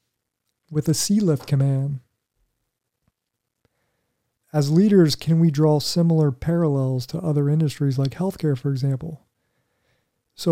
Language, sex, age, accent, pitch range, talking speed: English, male, 40-59, American, 135-155 Hz, 115 wpm